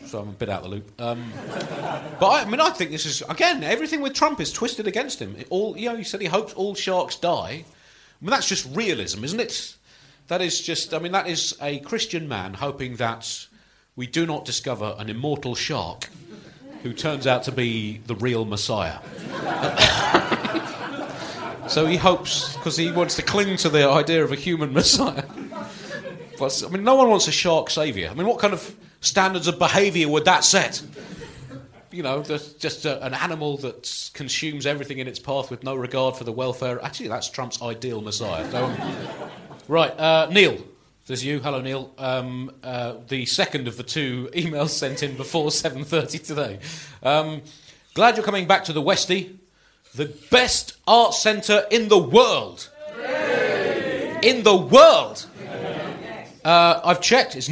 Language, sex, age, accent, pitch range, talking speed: English, male, 40-59, British, 130-185 Hz, 175 wpm